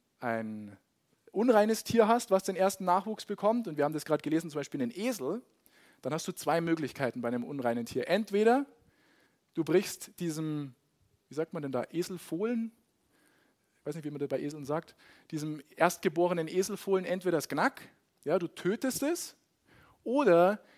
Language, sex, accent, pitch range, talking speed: German, male, German, 145-190 Hz, 165 wpm